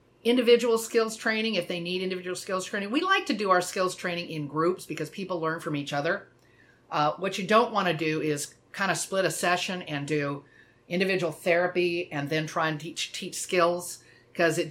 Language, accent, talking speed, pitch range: English, American, 205 wpm, 155-220 Hz